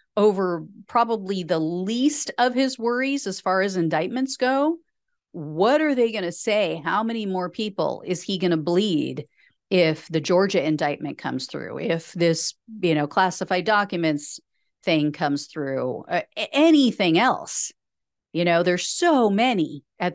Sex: female